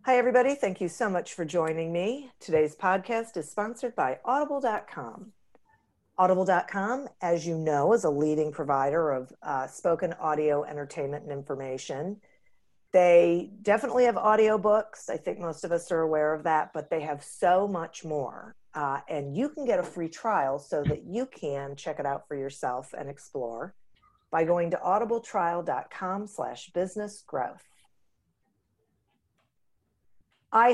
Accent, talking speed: American, 150 wpm